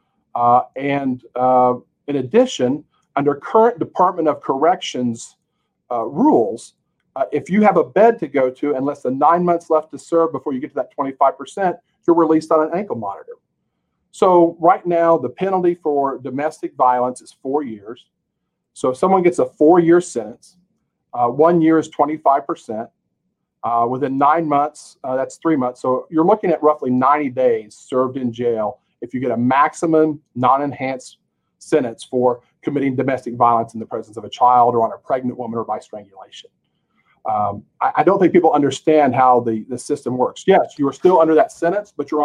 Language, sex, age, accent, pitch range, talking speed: English, male, 50-69, American, 125-170 Hz, 185 wpm